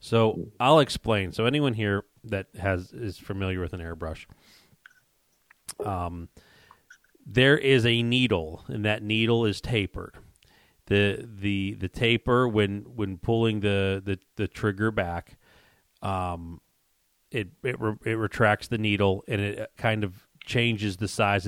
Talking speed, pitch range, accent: 140 wpm, 95-115 Hz, American